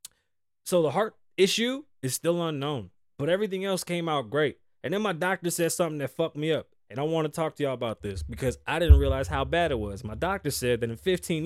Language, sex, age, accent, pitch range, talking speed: English, male, 20-39, American, 110-165 Hz, 240 wpm